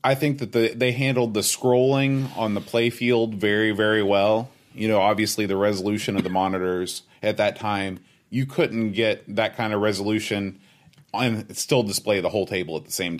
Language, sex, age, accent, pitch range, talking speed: English, male, 30-49, American, 100-115 Hz, 185 wpm